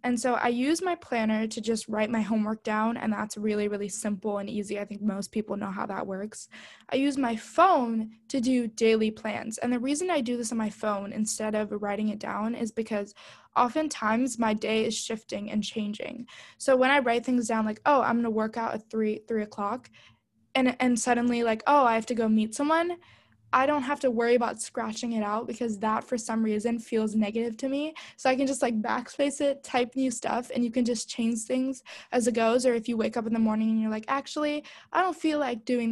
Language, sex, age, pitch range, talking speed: English, female, 10-29, 215-255 Hz, 230 wpm